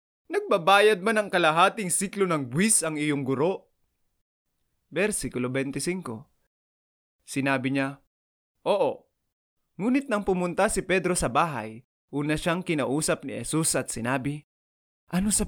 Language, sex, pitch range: English, male, 130-180 Hz